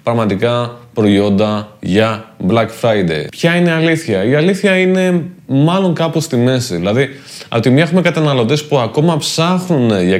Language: Greek